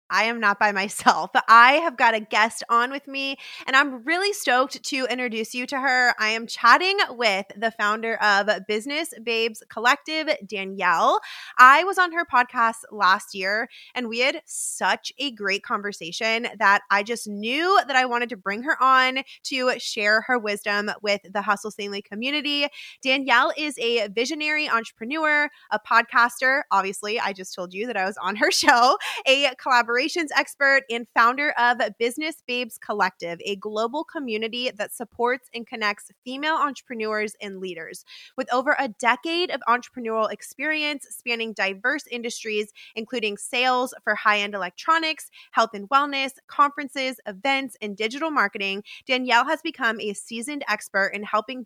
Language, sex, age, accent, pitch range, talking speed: English, female, 20-39, American, 210-275 Hz, 160 wpm